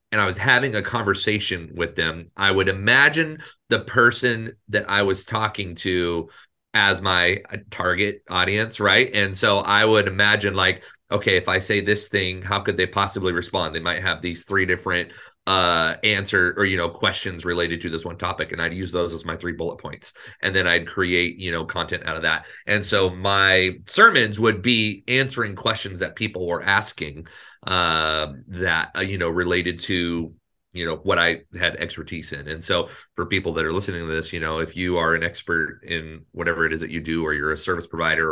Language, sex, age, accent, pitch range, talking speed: English, male, 30-49, American, 85-105 Hz, 200 wpm